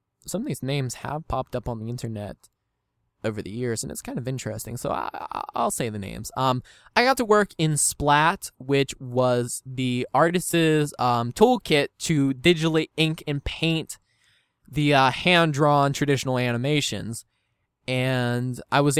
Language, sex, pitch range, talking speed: English, male, 120-150 Hz, 160 wpm